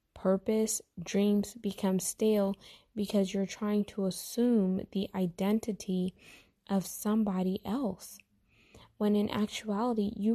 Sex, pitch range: female, 195-220 Hz